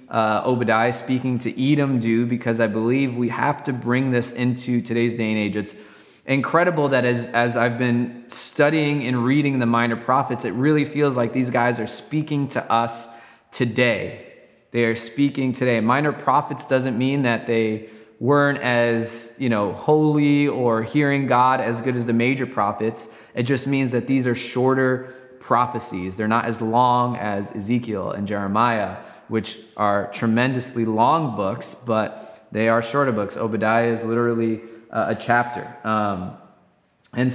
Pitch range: 115-130 Hz